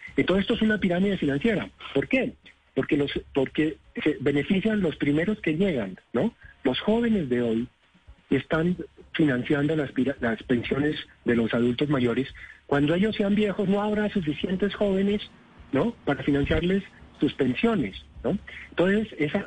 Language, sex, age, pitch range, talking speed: Spanish, male, 50-69, 140-200 Hz, 150 wpm